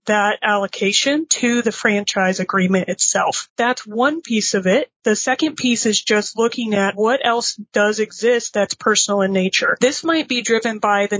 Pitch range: 205-245 Hz